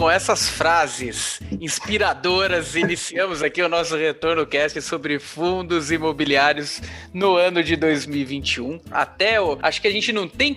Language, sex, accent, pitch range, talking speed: Portuguese, male, Brazilian, 140-225 Hz, 135 wpm